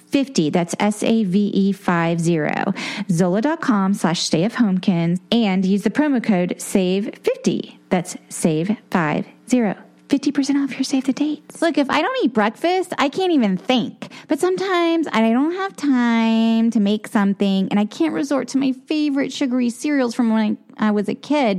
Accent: American